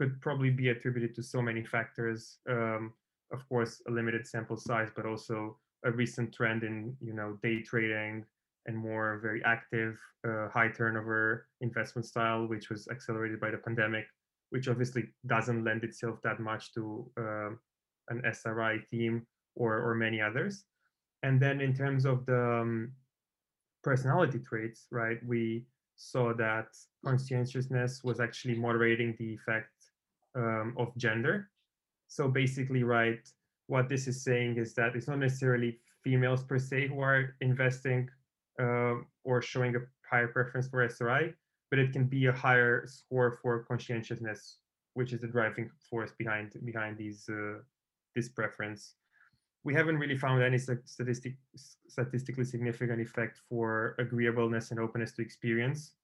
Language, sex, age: English, male, 20-39